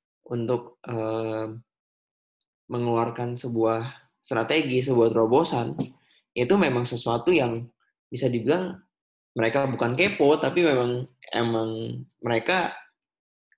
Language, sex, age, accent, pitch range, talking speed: Indonesian, male, 10-29, native, 115-130 Hz, 90 wpm